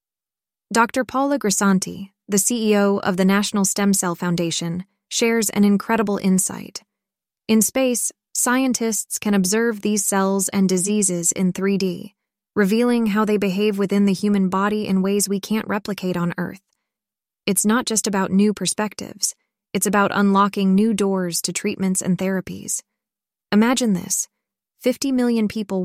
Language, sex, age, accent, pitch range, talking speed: English, female, 20-39, American, 195-220 Hz, 140 wpm